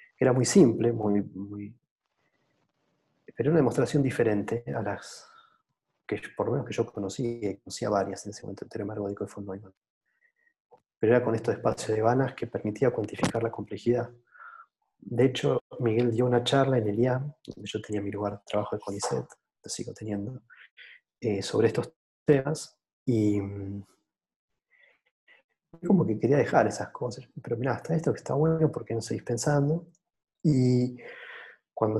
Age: 20-39